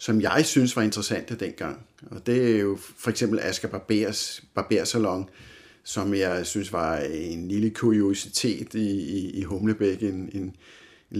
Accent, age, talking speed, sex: native, 50-69, 155 wpm, male